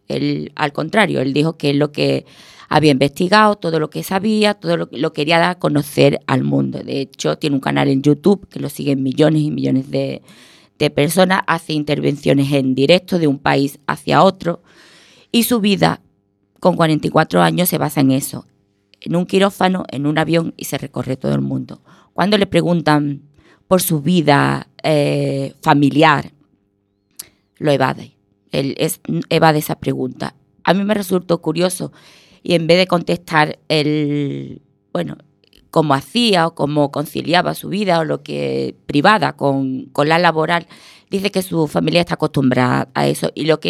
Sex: female